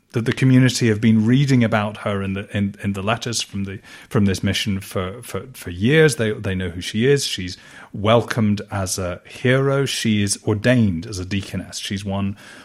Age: 30-49